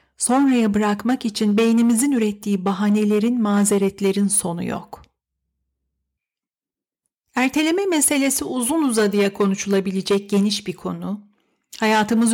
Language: Turkish